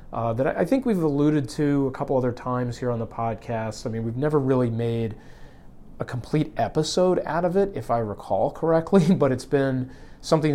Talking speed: 200 wpm